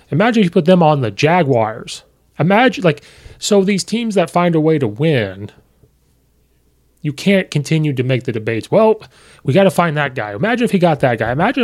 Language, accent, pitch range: English, American, 110-150 Hz